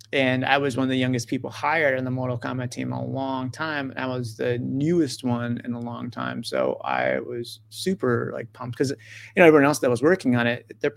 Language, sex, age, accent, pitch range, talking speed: English, male, 30-49, American, 115-130 Hz, 240 wpm